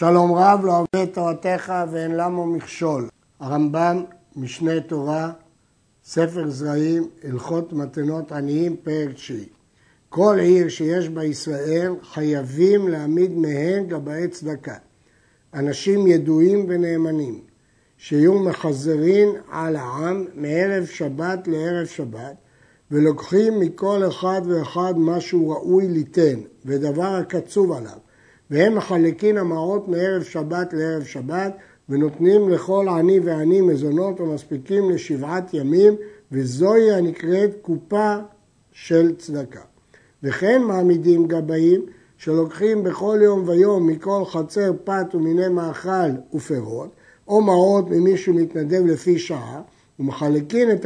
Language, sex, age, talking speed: Hebrew, male, 60-79, 105 wpm